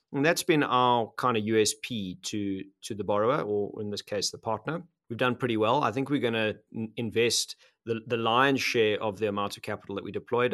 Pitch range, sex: 105-135 Hz, male